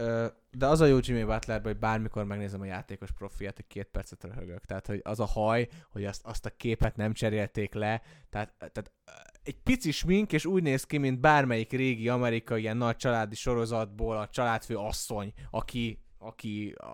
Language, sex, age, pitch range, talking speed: Hungarian, male, 20-39, 105-130 Hz, 175 wpm